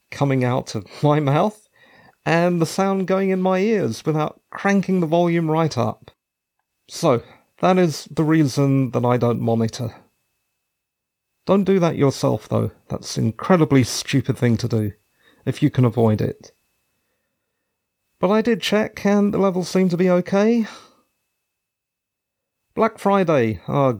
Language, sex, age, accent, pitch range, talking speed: English, male, 40-59, British, 125-195 Hz, 145 wpm